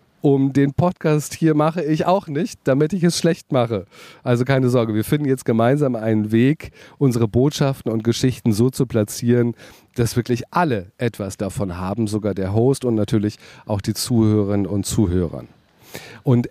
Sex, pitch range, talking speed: male, 110-145 Hz, 165 wpm